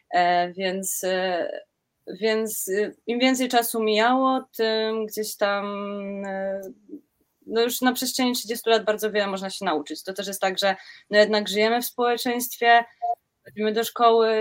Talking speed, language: 155 wpm, Polish